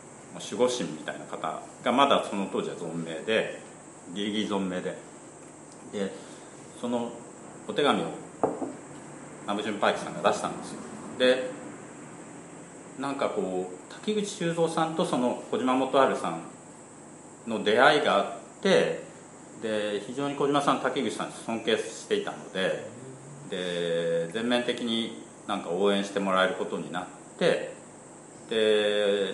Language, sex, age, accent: Japanese, male, 40-59, native